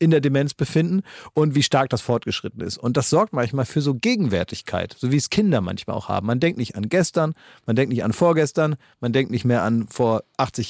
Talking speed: 230 wpm